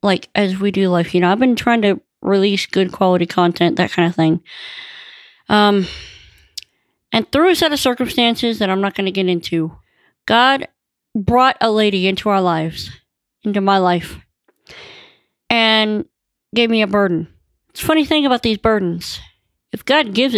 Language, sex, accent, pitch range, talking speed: English, female, American, 185-235 Hz, 170 wpm